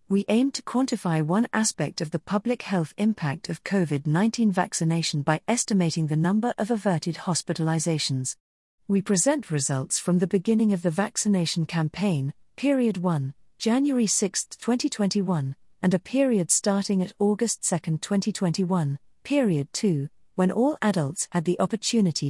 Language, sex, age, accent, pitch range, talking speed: English, female, 40-59, British, 160-215 Hz, 140 wpm